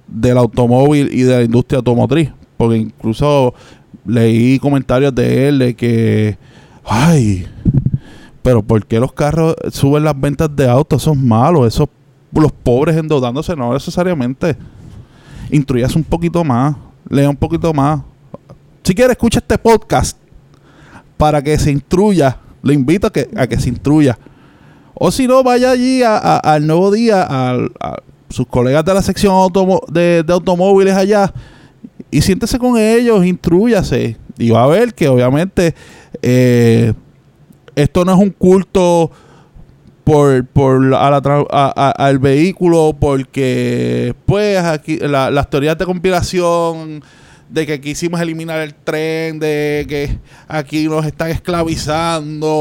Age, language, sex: 20-39, Spanish, male